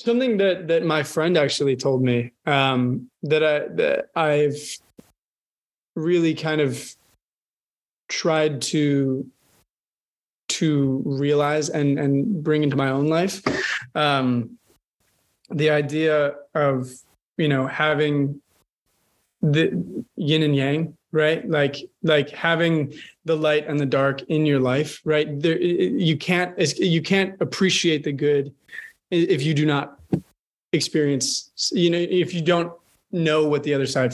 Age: 20-39